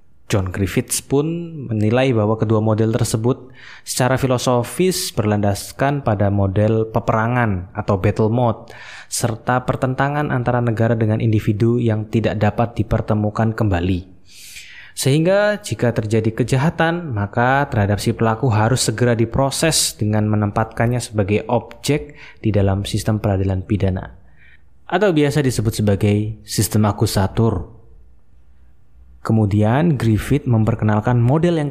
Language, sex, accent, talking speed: Indonesian, male, native, 110 wpm